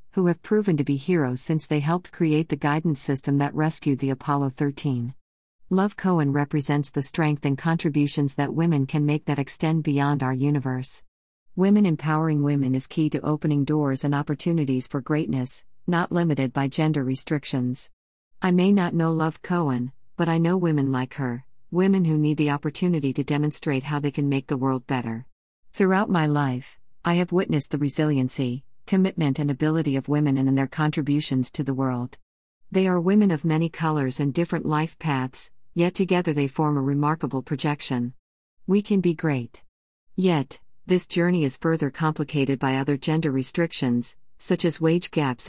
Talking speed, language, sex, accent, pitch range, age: 175 wpm, English, female, American, 135-165 Hz, 50-69